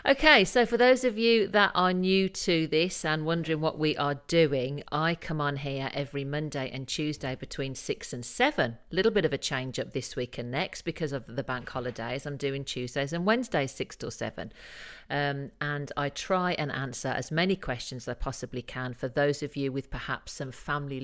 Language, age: English, 50-69